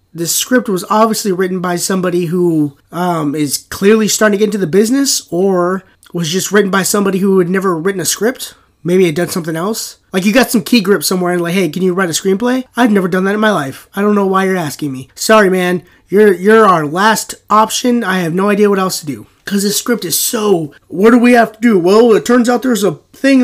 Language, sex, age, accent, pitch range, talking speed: English, male, 30-49, American, 170-215 Hz, 245 wpm